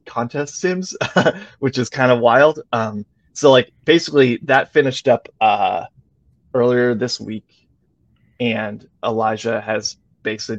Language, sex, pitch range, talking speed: English, male, 110-130 Hz, 125 wpm